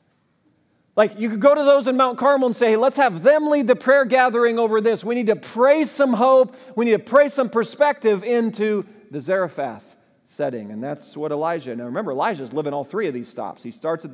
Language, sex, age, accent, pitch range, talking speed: English, male, 40-59, American, 140-230 Hz, 225 wpm